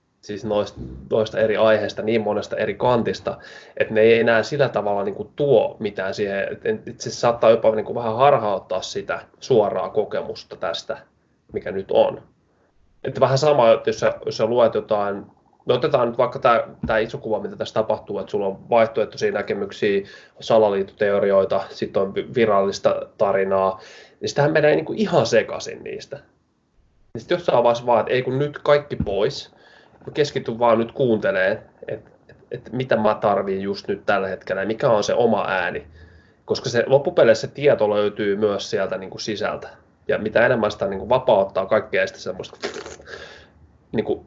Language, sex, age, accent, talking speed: Finnish, male, 20-39, native, 160 wpm